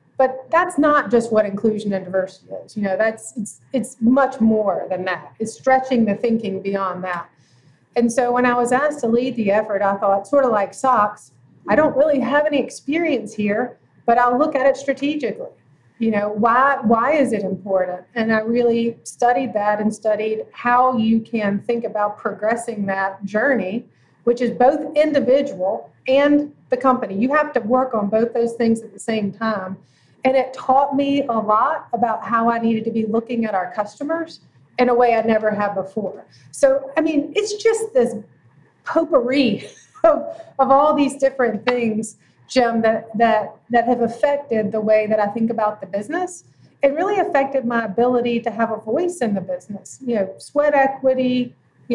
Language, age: English, 30-49